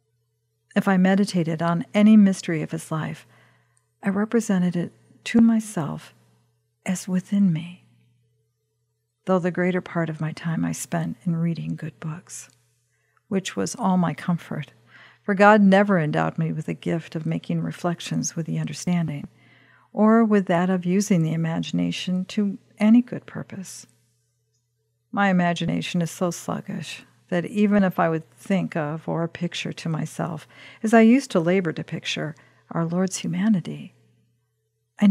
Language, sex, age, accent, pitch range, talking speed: English, female, 50-69, American, 120-195 Hz, 150 wpm